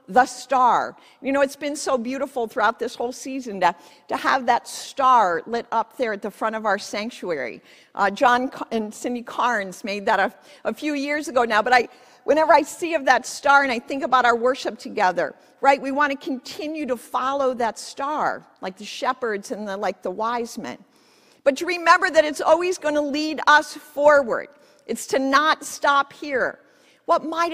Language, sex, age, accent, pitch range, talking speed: English, female, 50-69, American, 235-285 Hz, 195 wpm